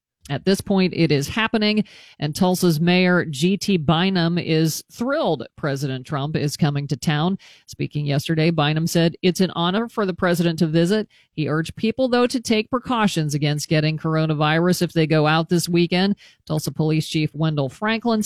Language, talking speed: English, 170 wpm